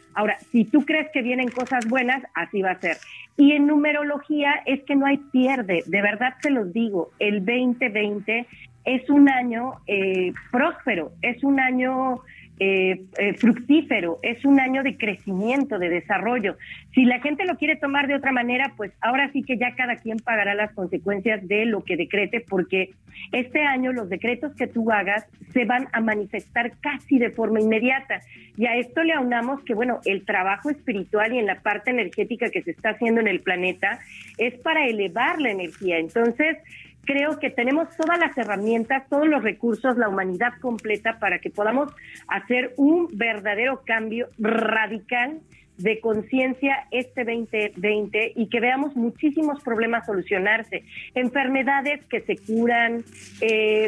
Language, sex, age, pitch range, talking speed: Spanish, female, 40-59, 210-265 Hz, 165 wpm